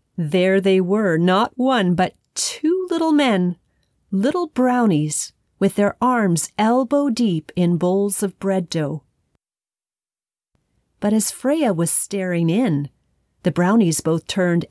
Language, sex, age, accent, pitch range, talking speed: English, female, 40-59, American, 175-235 Hz, 120 wpm